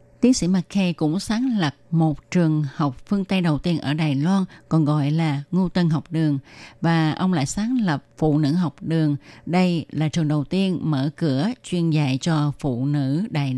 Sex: female